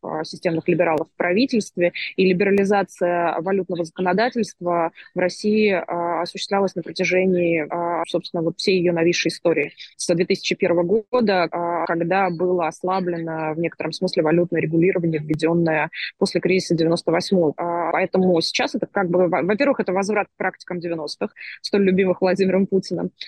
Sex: female